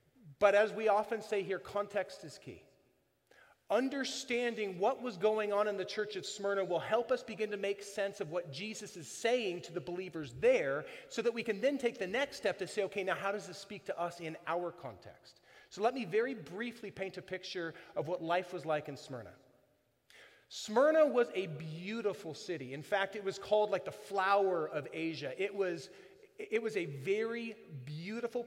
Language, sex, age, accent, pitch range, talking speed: English, male, 30-49, American, 170-230 Hz, 200 wpm